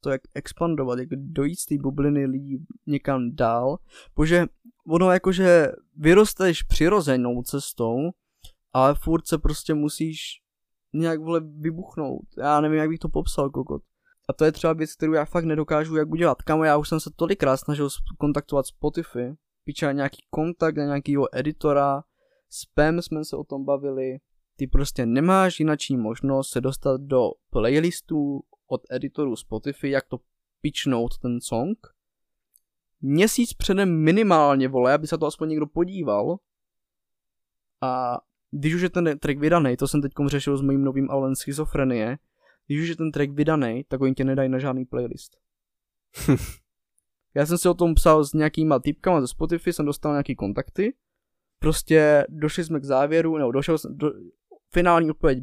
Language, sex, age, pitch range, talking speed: Czech, male, 20-39, 135-160 Hz, 155 wpm